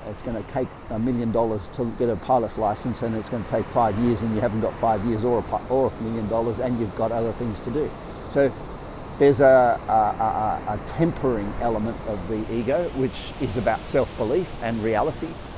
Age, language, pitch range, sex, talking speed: 50-69, English, 115-140 Hz, male, 200 wpm